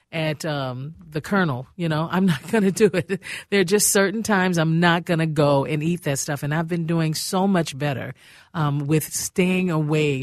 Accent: American